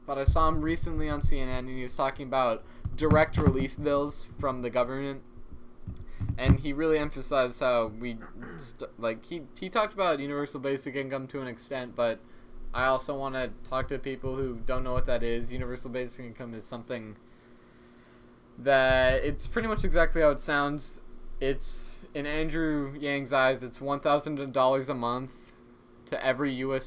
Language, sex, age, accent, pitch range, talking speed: English, male, 20-39, American, 120-135 Hz, 165 wpm